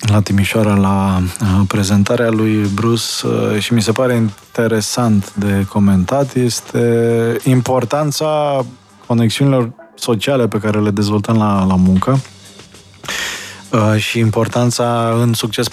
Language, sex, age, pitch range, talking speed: Romanian, male, 20-39, 105-130 Hz, 105 wpm